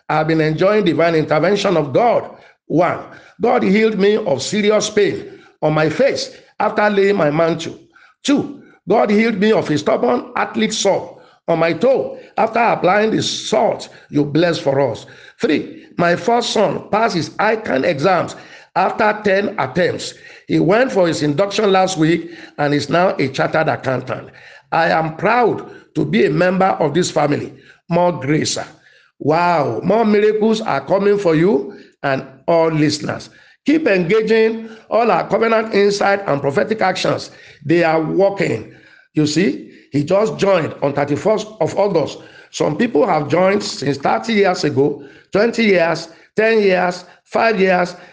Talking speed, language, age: 155 wpm, English, 50-69